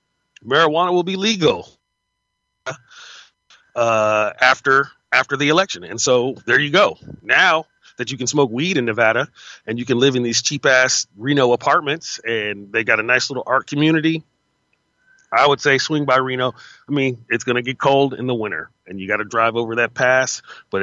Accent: American